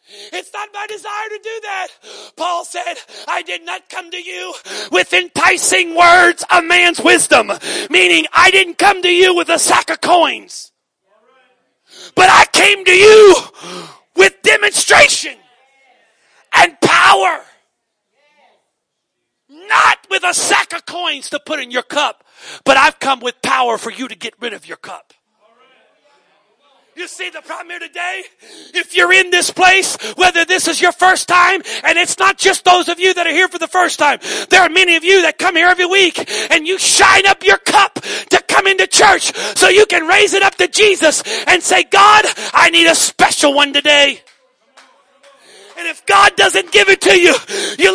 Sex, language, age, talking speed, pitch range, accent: male, English, 40-59, 180 wpm, 310-385 Hz, American